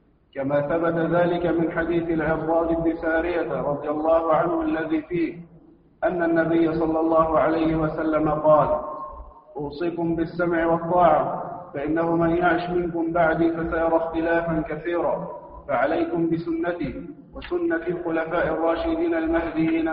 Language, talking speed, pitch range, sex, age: Arabic, 110 wpm, 160-170 Hz, male, 40-59